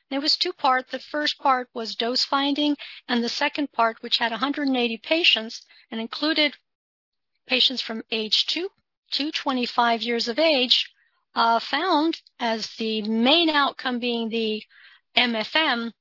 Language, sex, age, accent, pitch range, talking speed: English, female, 50-69, American, 225-280 Hz, 140 wpm